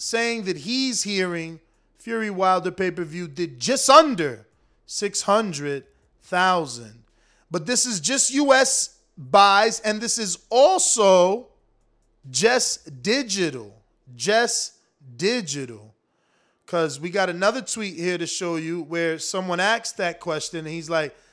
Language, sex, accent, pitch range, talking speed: English, male, American, 160-220 Hz, 120 wpm